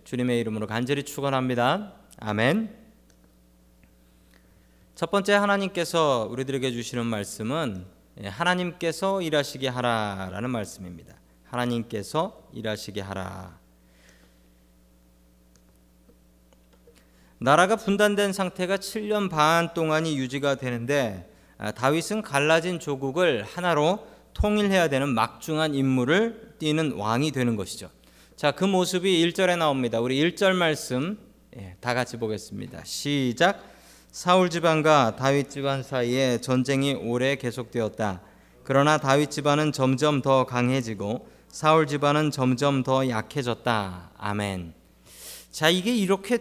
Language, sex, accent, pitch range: Korean, male, native, 105-170 Hz